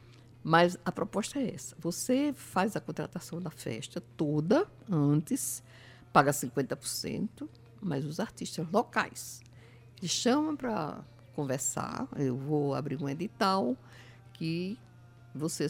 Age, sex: 60-79, female